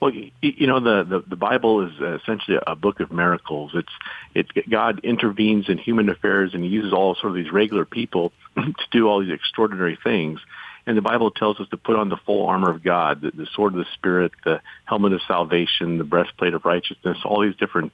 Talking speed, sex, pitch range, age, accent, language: 215 wpm, male, 85-105 Hz, 50-69, American, English